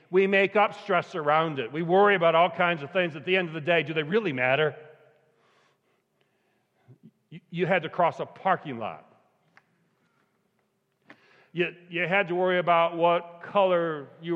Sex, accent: male, American